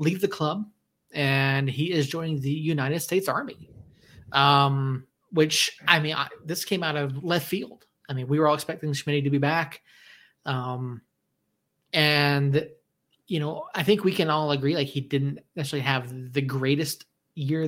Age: 30-49